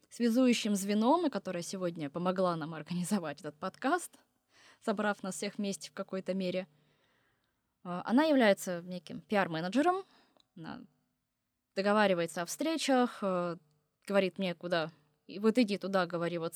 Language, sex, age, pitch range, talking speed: Russian, female, 20-39, 175-230 Hz, 115 wpm